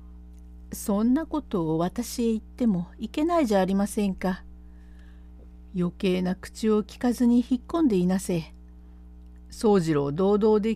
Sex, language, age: female, Japanese, 50-69